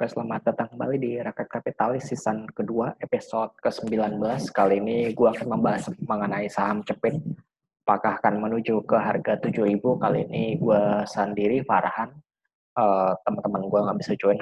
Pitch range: 100-125 Hz